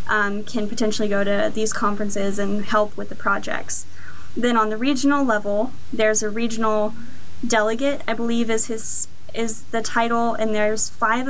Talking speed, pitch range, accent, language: 160 wpm, 210-235 Hz, American, English